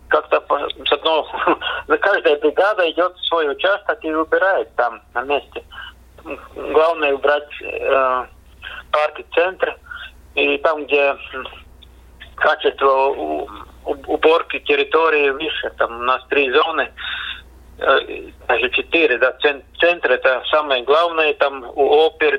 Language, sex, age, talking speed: Russian, male, 50-69, 120 wpm